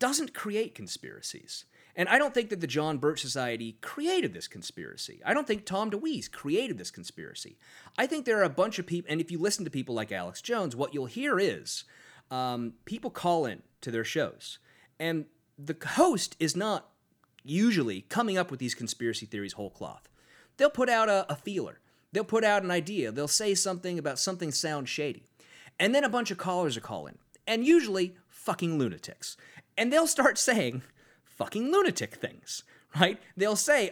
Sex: male